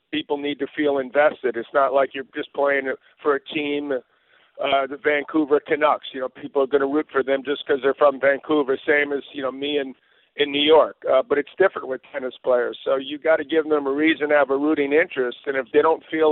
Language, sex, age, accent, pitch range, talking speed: English, male, 50-69, American, 135-150 Hz, 245 wpm